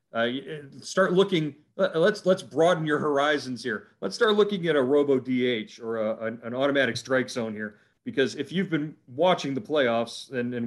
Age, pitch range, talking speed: 40-59, 115-140 Hz, 180 wpm